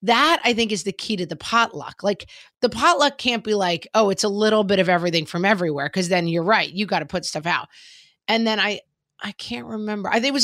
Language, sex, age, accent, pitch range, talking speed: English, female, 30-49, American, 170-225 Hz, 255 wpm